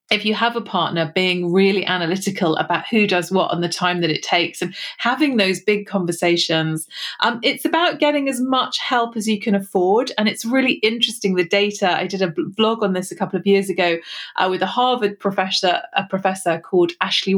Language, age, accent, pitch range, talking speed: English, 30-49, British, 185-220 Hz, 205 wpm